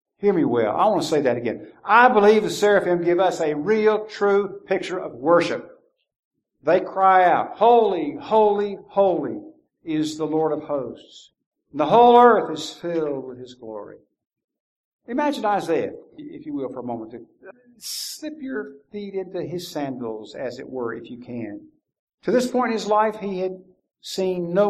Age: 50-69